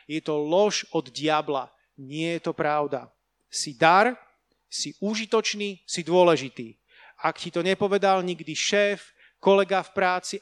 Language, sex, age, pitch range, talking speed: Slovak, male, 30-49, 160-205 Hz, 140 wpm